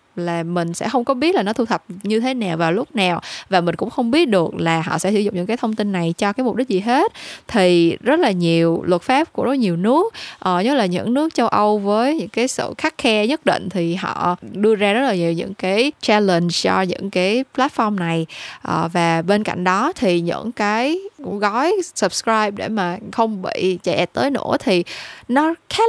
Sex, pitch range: female, 185-260 Hz